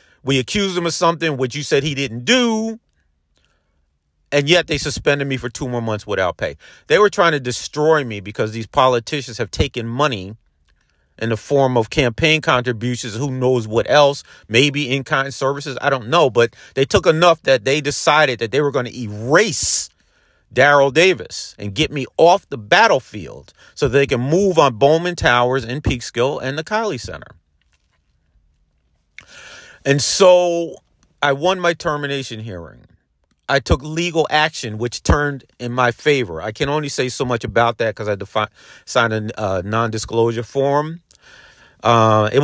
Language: English